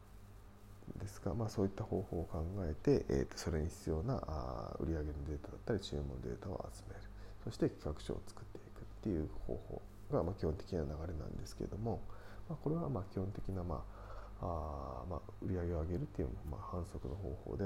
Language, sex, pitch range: Japanese, male, 85-105 Hz